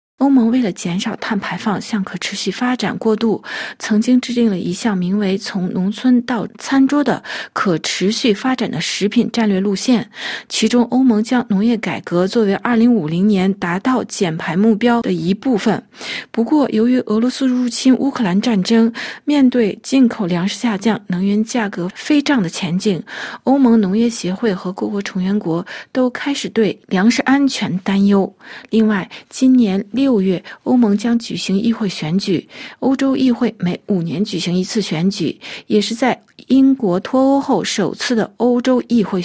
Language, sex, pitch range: Chinese, female, 195-240 Hz